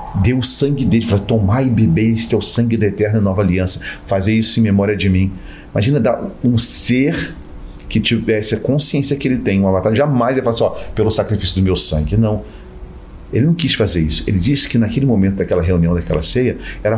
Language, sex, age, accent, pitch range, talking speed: Portuguese, male, 40-59, Brazilian, 90-115 Hz, 215 wpm